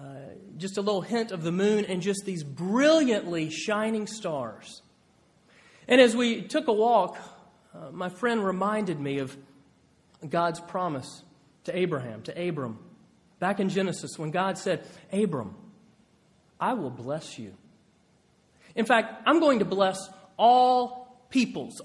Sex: male